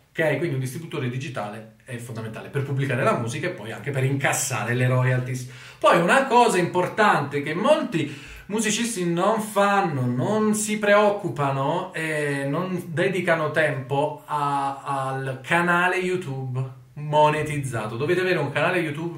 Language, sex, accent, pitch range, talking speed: Italian, male, native, 130-170 Hz, 130 wpm